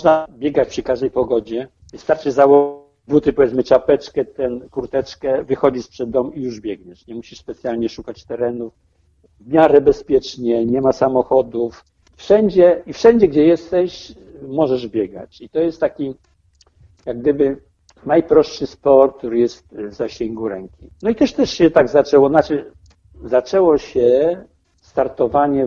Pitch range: 120-160 Hz